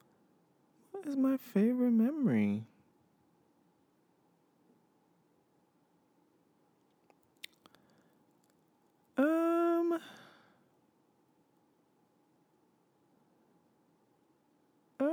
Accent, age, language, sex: American, 20-39, English, male